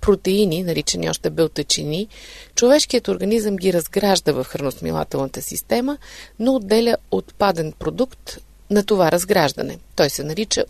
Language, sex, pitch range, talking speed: Bulgarian, female, 165-220 Hz, 120 wpm